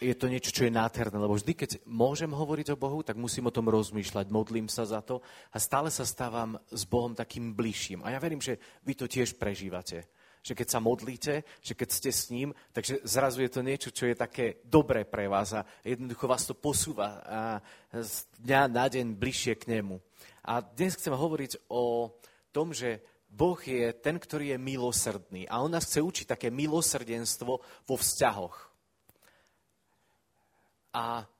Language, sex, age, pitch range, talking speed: Slovak, male, 30-49, 115-145 Hz, 180 wpm